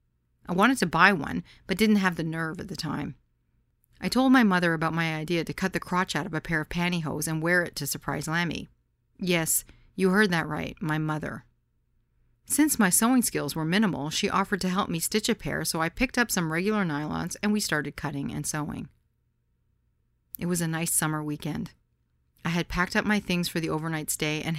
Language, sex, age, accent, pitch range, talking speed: English, female, 40-59, American, 150-185 Hz, 210 wpm